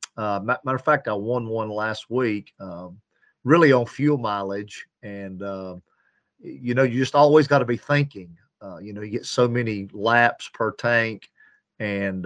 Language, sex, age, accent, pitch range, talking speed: English, male, 40-59, American, 100-120 Hz, 175 wpm